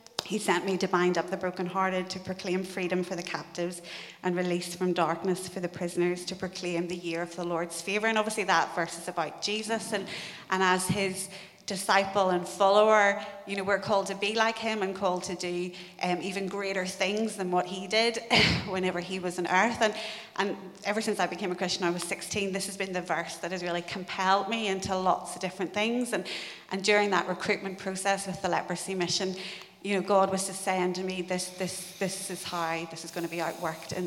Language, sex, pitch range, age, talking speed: English, female, 180-200 Hz, 30-49, 220 wpm